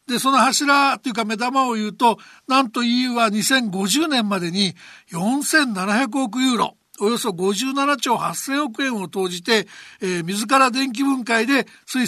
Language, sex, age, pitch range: Japanese, male, 60-79, 210-255 Hz